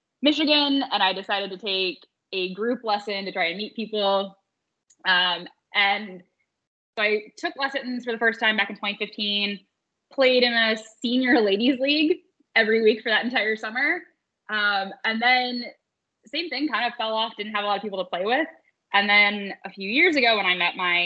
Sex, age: female, 10-29